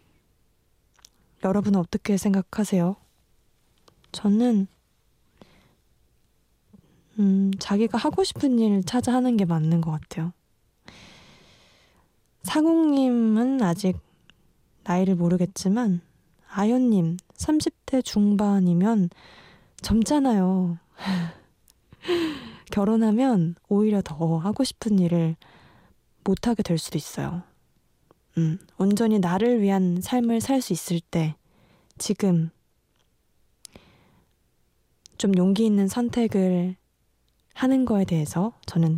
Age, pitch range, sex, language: 20-39, 175-225 Hz, female, Korean